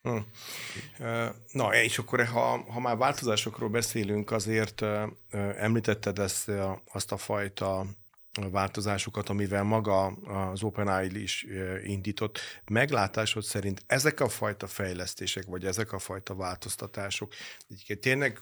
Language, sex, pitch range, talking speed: Hungarian, male, 90-105 Hz, 110 wpm